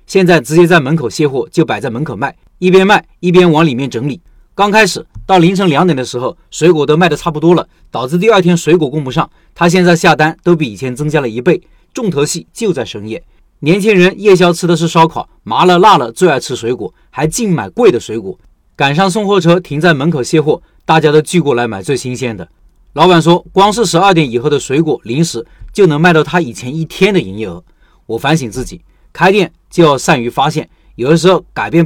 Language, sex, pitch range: Chinese, male, 125-175 Hz